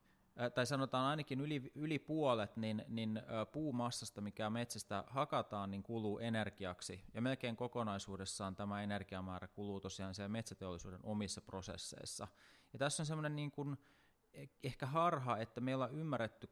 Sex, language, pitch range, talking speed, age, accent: male, Finnish, 100-120 Hz, 130 wpm, 30-49, native